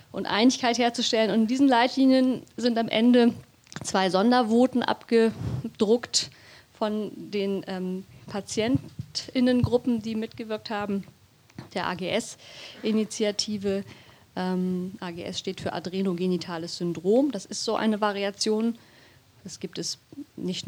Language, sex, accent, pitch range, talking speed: German, female, German, 170-210 Hz, 105 wpm